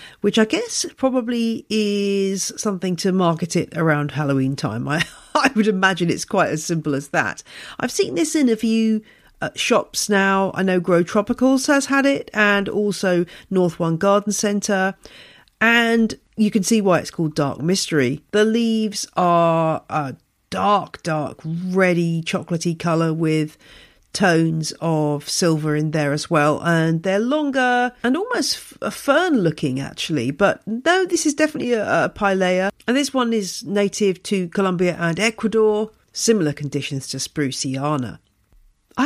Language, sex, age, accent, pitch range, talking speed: English, female, 40-59, British, 160-225 Hz, 155 wpm